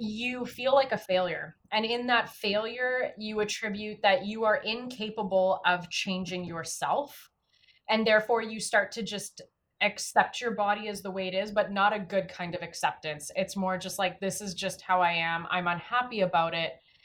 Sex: female